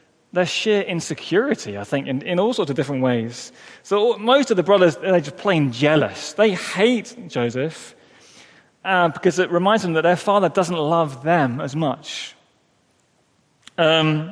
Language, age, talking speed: English, 30-49, 160 wpm